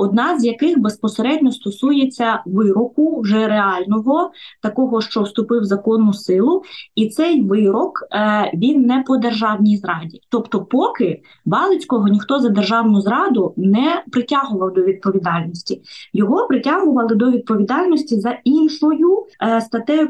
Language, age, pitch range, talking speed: Ukrainian, 20-39, 200-265 Hz, 120 wpm